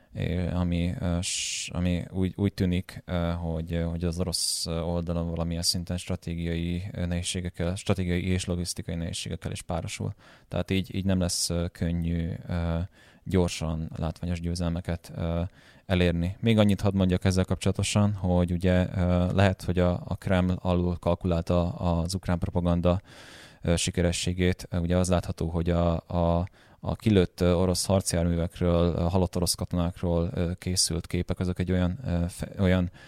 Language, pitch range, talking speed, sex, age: Hungarian, 85-95 Hz, 130 wpm, male, 20-39